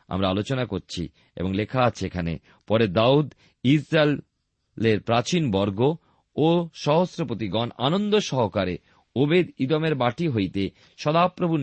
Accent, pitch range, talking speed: native, 100-145 Hz, 105 wpm